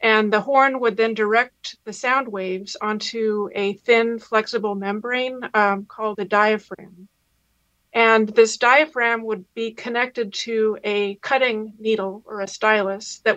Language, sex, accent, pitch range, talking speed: English, female, American, 205-235 Hz, 145 wpm